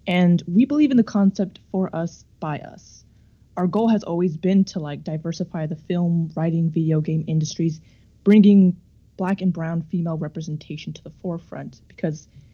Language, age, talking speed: English, 20-39, 165 wpm